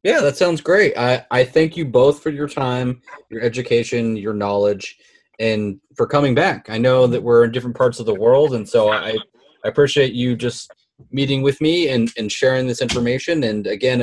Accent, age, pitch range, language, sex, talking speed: American, 20-39, 110-140 Hz, English, male, 200 wpm